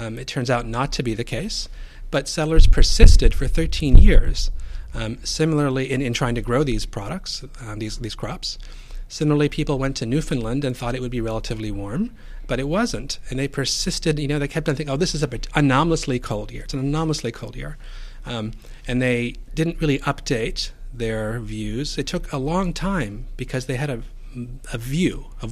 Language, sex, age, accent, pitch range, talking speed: English, male, 40-59, American, 115-140 Hz, 200 wpm